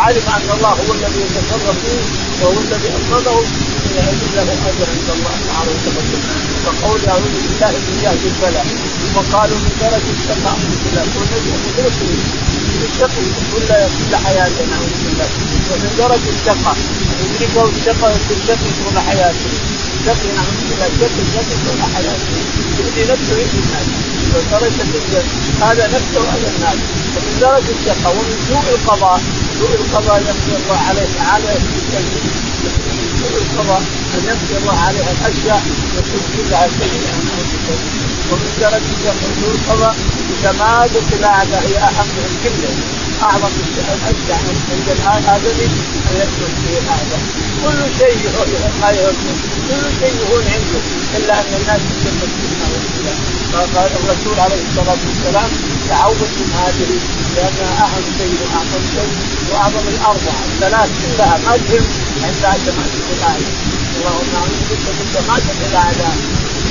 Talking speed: 80 wpm